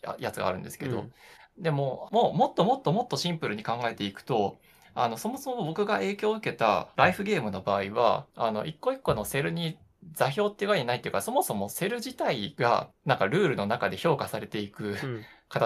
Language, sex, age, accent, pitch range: Japanese, male, 20-39, native, 125-210 Hz